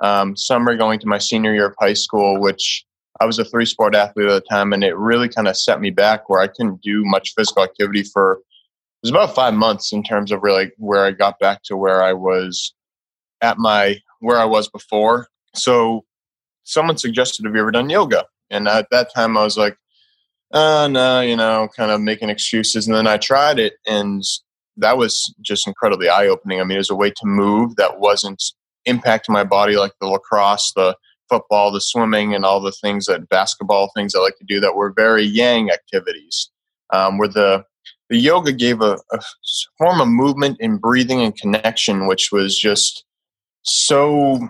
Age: 20-39